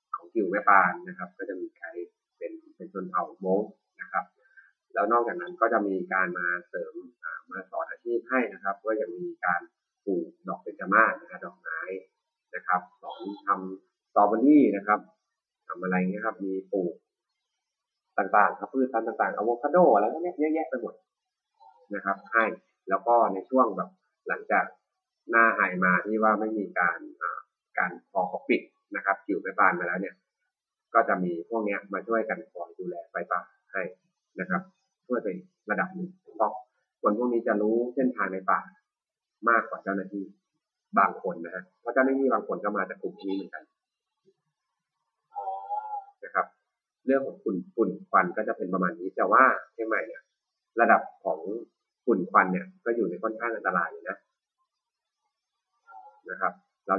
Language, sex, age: Thai, male, 30-49